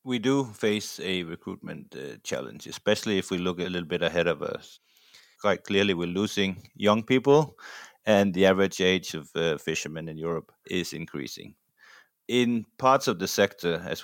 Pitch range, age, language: 85-100 Hz, 30-49, English